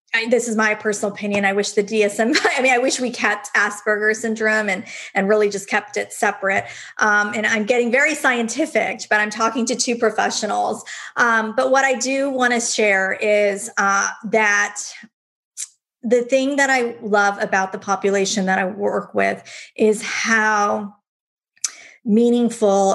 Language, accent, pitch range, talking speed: English, American, 195-225 Hz, 165 wpm